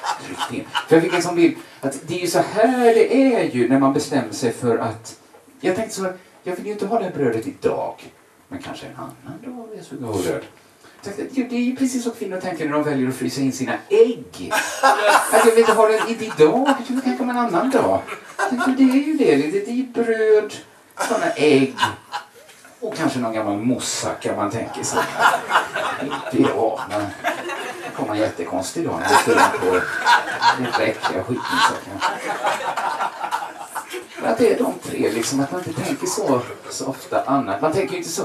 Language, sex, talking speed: Swedish, male, 185 wpm